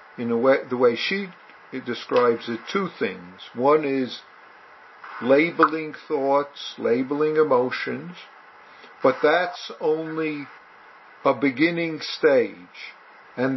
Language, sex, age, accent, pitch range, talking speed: English, male, 50-69, American, 130-160 Hz, 100 wpm